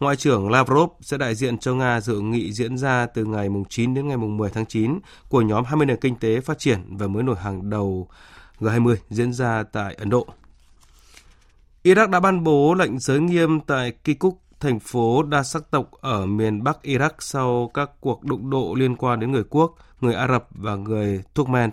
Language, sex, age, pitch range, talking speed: Vietnamese, male, 20-39, 110-140 Hz, 205 wpm